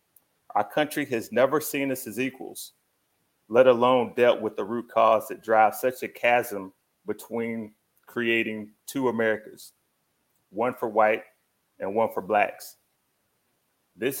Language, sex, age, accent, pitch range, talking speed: English, male, 30-49, American, 110-130 Hz, 135 wpm